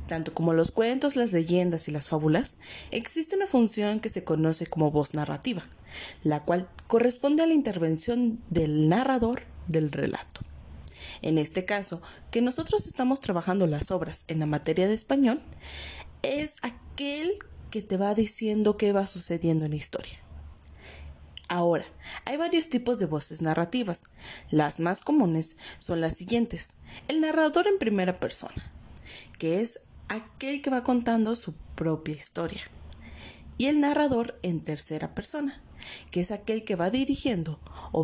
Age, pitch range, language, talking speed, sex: 20-39, 155-240 Hz, Spanish, 150 wpm, female